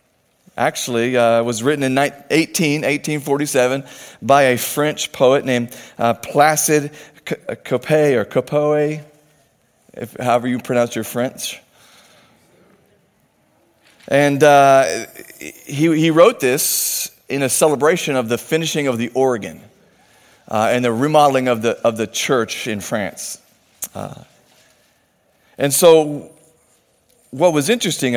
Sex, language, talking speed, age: male, English, 125 wpm, 40-59